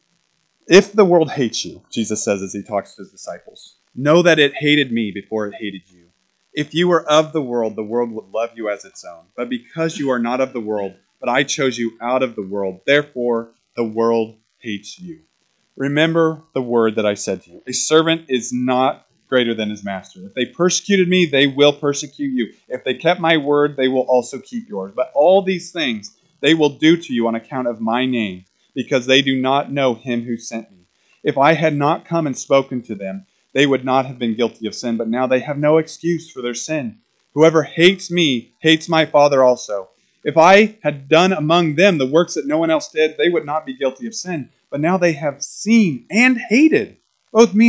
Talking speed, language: 220 wpm, English